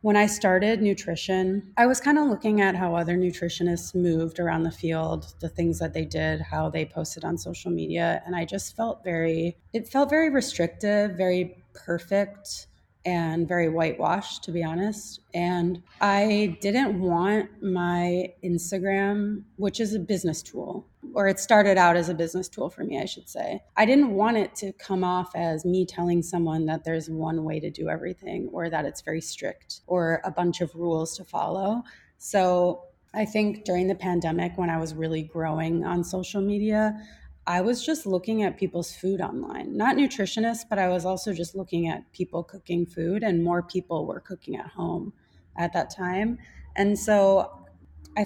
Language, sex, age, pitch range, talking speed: English, female, 30-49, 170-205 Hz, 180 wpm